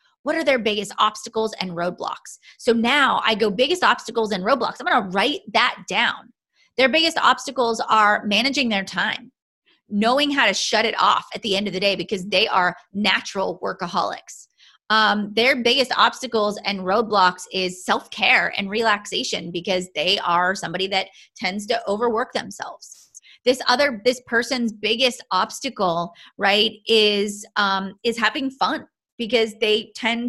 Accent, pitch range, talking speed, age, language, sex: American, 200-245 Hz, 160 wpm, 30-49, English, female